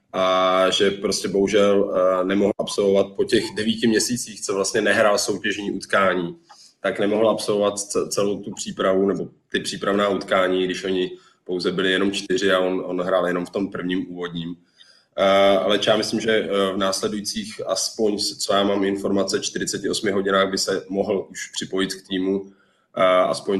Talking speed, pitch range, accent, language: 155 wpm, 95-100 Hz, native, Czech